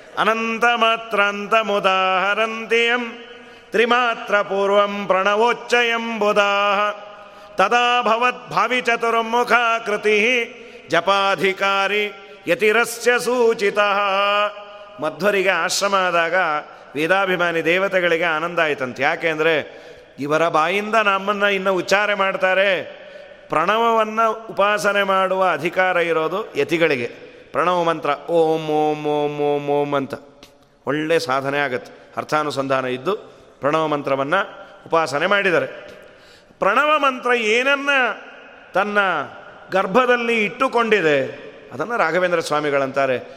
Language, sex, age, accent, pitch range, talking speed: Kannada, male, 30-49, native, 165-230 Hz, 80 wpm